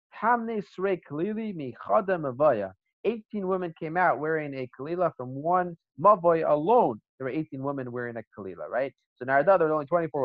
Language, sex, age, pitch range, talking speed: English, male, 30-49, 120-180 Hz, 150 wpm